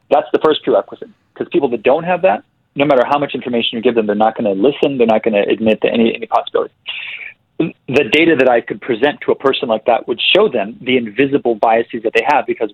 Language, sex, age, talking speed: English, male, 30-49, 250 wpm